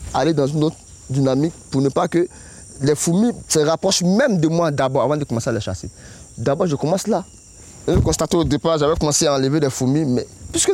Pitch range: 100-155 Hz